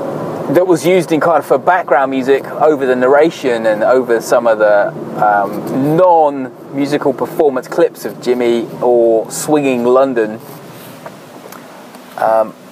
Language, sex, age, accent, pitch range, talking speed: English, male, 20-39, British, 130-175 Hz, 125 wpm